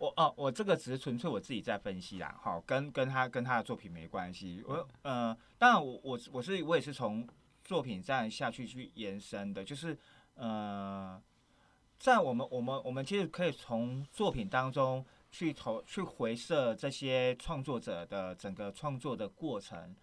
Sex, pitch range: male, 120-170 Hz